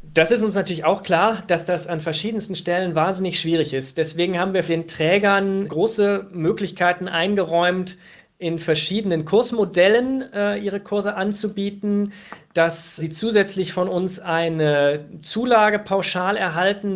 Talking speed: 135 wpm